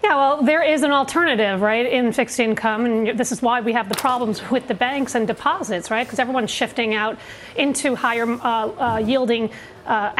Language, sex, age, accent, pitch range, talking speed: English, female, 40-59, American, 230-310 Hz, 200 wpm